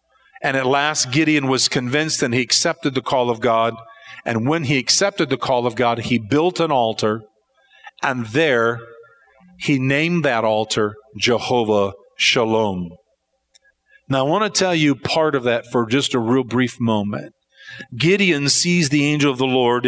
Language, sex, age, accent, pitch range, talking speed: English, male, 50-69, American, 120-165 Hz, 165 wpm